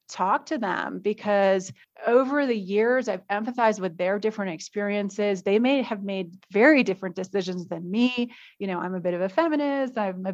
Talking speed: 185 wpm